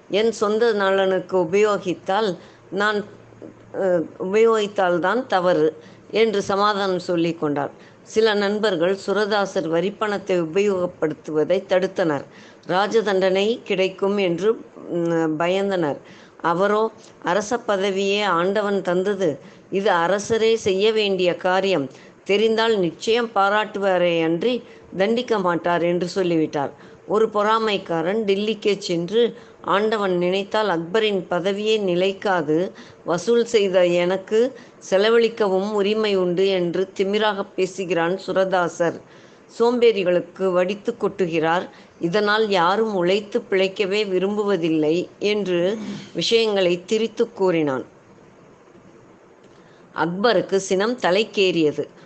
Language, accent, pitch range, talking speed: Tamil, native, 180-210 Hz, 80 wpm